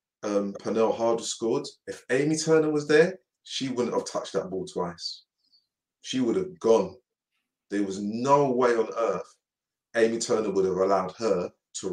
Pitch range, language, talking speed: 105-150 Hz, English, 165 wpm